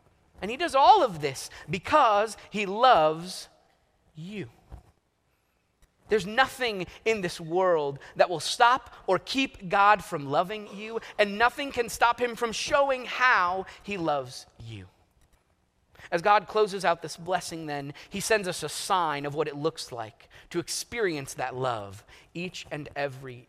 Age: 30-49